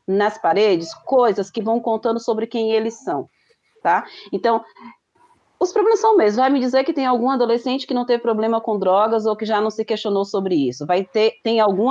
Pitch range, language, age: 195-230 Hz, Portuguese, 30-49